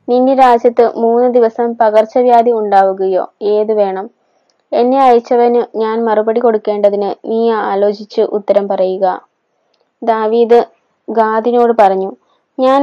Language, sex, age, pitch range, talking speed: Malayalam, female, 20-39, 210-240 Hz, 100 wpm